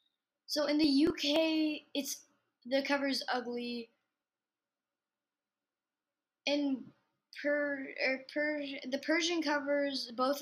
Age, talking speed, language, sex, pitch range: 10-29, 75 wpm, English, female, 240-300 Hz